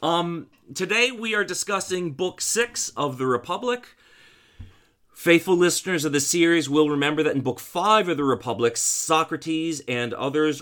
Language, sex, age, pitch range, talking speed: English, male, 30-49, 110-150 Hz, 155 wpm